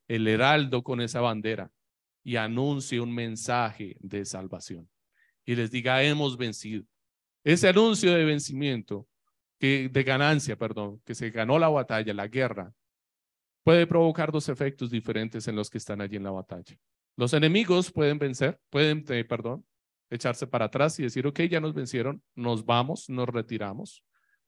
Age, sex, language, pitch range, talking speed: 30-49, male, Spanish, 110-145 Hz, 155 wpm